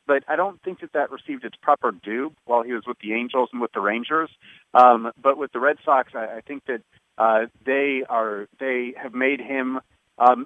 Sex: male